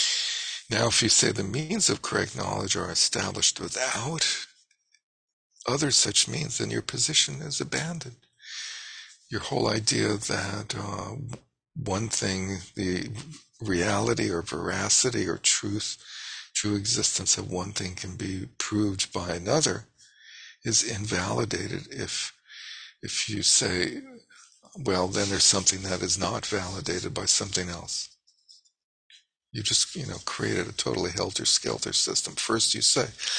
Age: 50-69